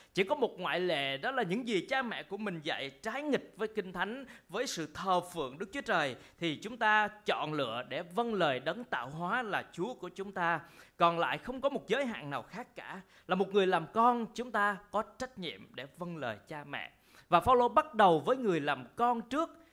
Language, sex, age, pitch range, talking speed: Vietnamese, male, 20-39, 155-245 Hz, 230 wpm